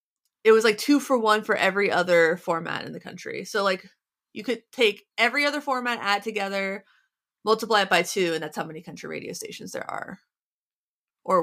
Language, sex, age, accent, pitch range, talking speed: English, female, 20-39, American, 200-250 Hz, 195 wpm